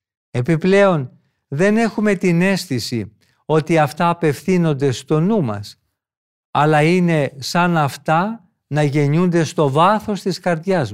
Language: Greek